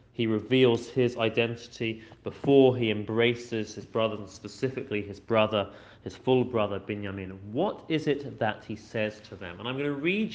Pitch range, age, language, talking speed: 120-150 Hz, 30-49, English, 175 wpm